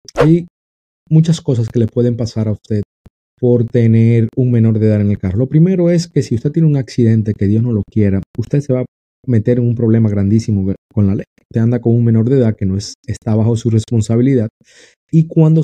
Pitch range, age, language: 105-135 Hz, 30-49, Spanish